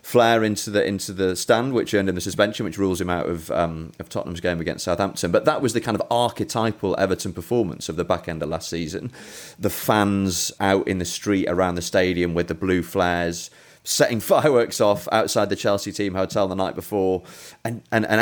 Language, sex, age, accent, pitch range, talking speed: English, male, 30-49, British, 85-105 Hz, 215 wpm